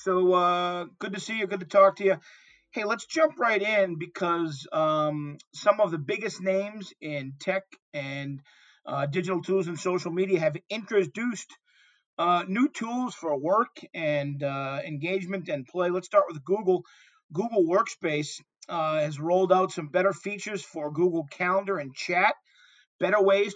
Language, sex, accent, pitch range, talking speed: English, male, American, 155-200 Hz, 165 wpm